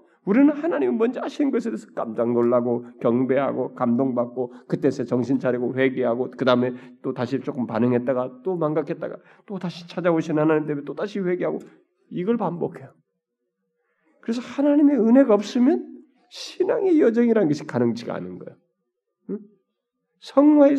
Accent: native